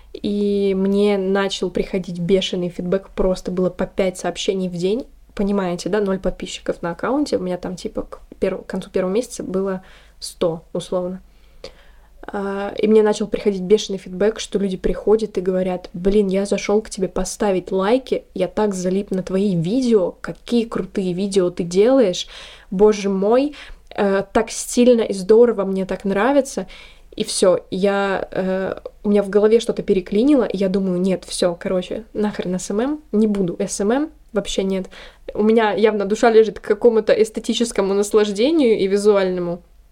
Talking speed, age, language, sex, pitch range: 155 wpm, 20-39, Russian, female, 190-220 Hz